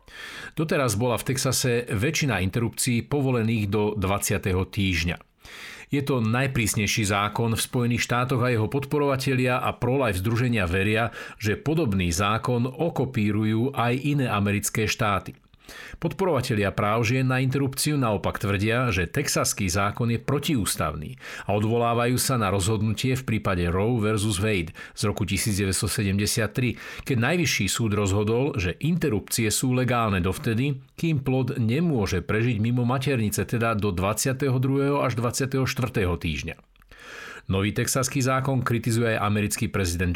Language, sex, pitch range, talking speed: Slovak, male, 100-130 Hz, 125 wpm